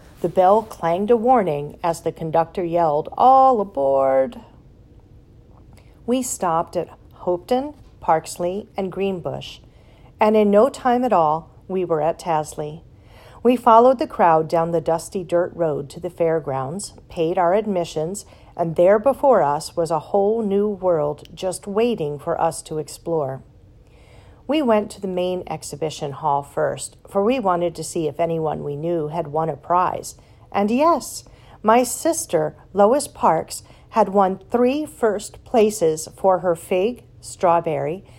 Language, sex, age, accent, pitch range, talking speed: English, female, 40-59, American, 150-200 Hz, 150 wpm